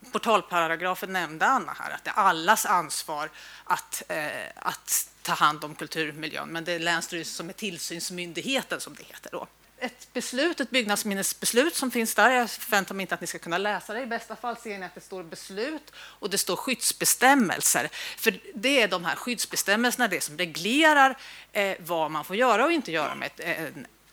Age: 30-49